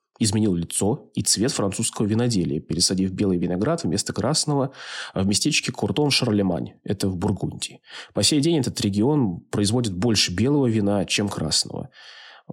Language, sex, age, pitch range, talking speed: Russian, male, 20-39, 95-135 Hz, 135 wpm